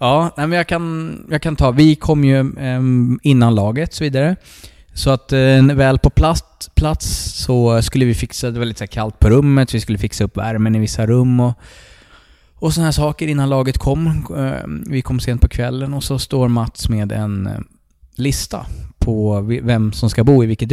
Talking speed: 185 wpm